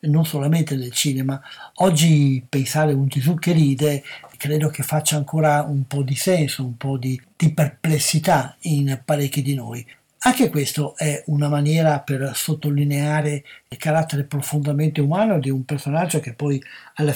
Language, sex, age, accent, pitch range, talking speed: Italian, male, 60-79, native, 140-155 Hz, 155 wpm